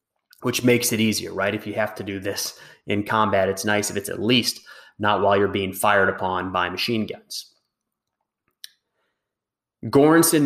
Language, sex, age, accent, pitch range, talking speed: English, male, 30-49, American, 100-120 Hz, 165 wpm